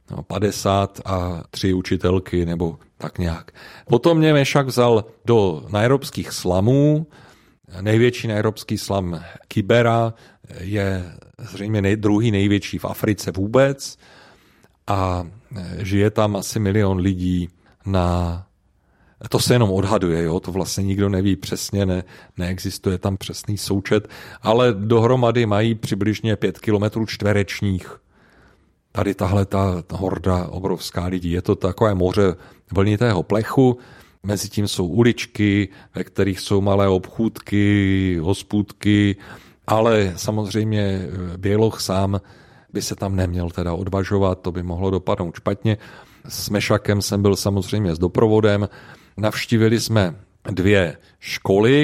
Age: 40-59